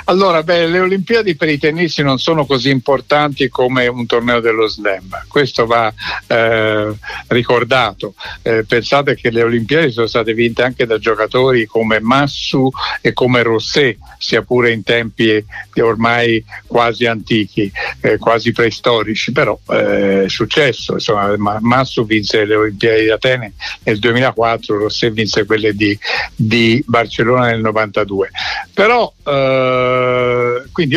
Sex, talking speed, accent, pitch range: male, 135 wpm, native, 110-130 Hz